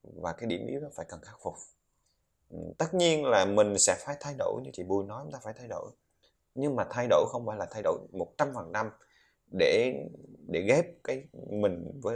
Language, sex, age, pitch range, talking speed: Vietnamese, male, 20-39, 100-150 Hz, 205 wpm